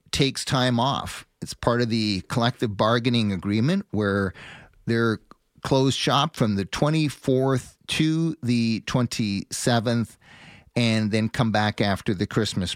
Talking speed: 125 wpm